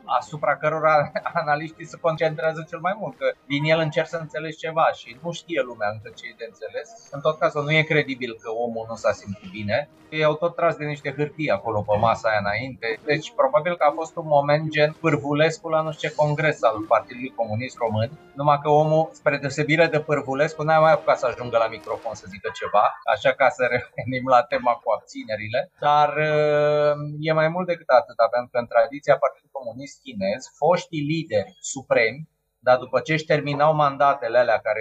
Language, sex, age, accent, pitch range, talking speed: Romanian, male, 30-49, native, 125-160 Hz, 200 wpm